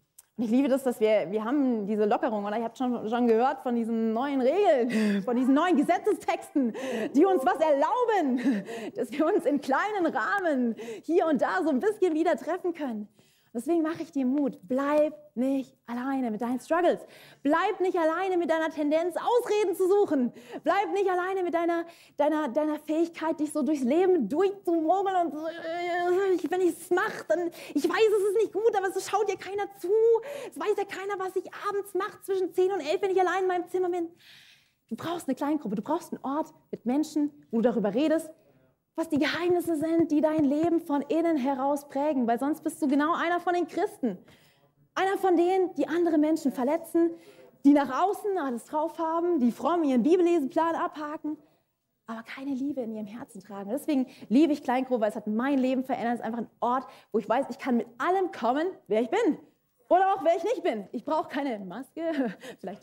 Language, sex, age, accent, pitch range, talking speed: German, female, 30-49, German, 250-345 Hz, 200 wpm